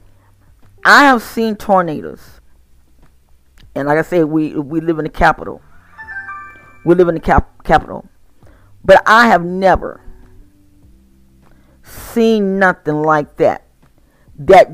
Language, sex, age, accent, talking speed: English, female, 40-59, American, 120 wpm